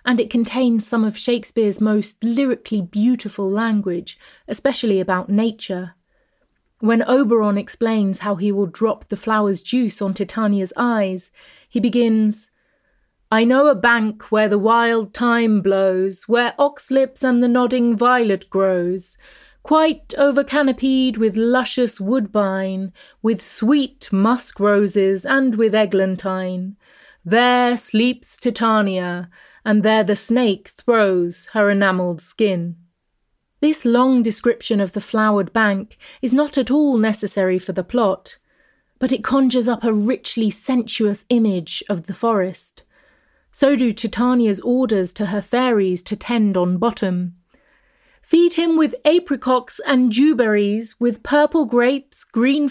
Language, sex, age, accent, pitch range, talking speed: English, female, 30-49, British, 200-250 Hz, 130 wpm